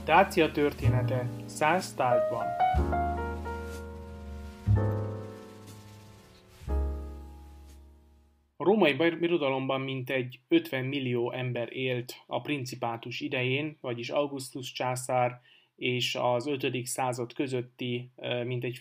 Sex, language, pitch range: male, Hungarian, 120-140 Hz